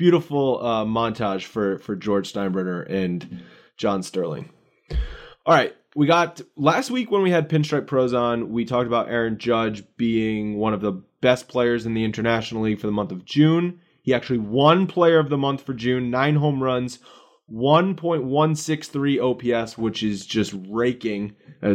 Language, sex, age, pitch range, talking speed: English, male, 20-39, 115-150 Hz, 180 wpm